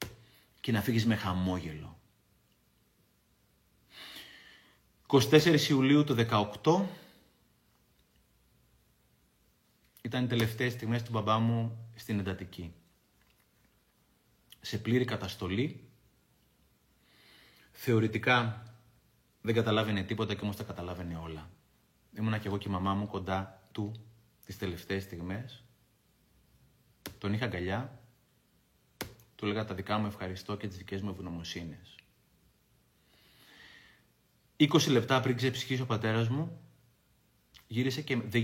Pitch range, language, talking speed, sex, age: 90-115 Hz, Greek, 105 wpm, male, 30-49